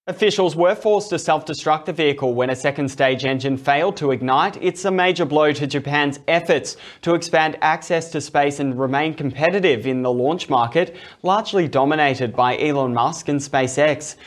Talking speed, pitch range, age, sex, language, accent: 170 wpm, 135-160 Hz, 20-39, male, English, Australian